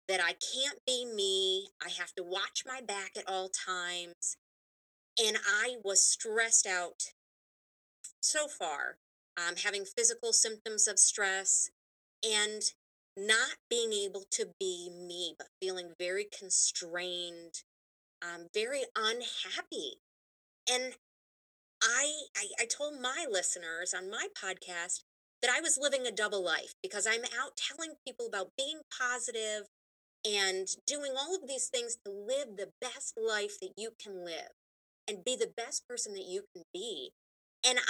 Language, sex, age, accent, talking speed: English, female, 30-49, American, 145 wpm